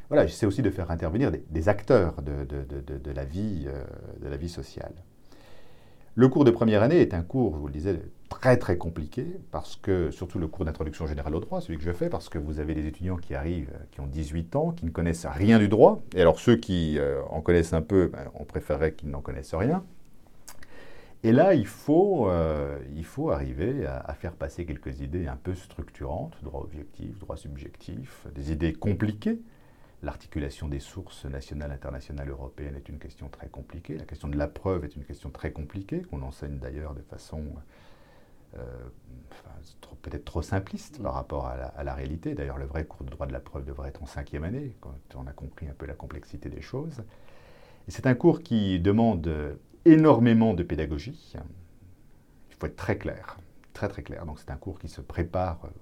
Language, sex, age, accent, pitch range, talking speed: French, male, 50-69, French, 70-95 Hz, 200 wpm